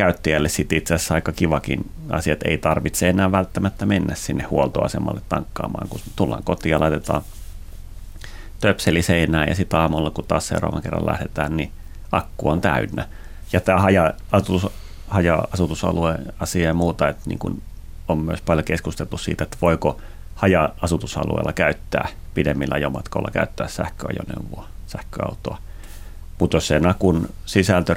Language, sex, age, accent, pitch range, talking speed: Finnish, male, 30-49, native, 75-90 Hz, 125 wpm